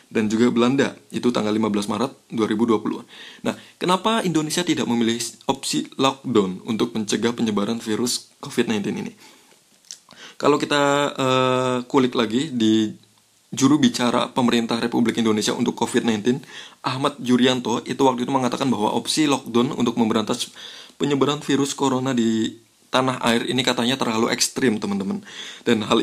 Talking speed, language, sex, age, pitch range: 135 wpm, Indonesian, male, 20-39, 115-135 Hz